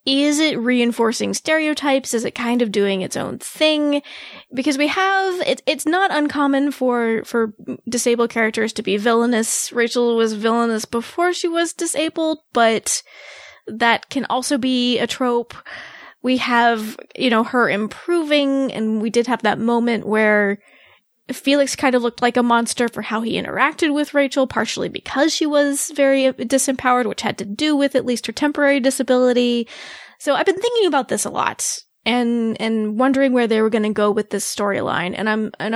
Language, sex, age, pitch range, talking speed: English, female, 20-39, 225-280 Hz, 175 wpm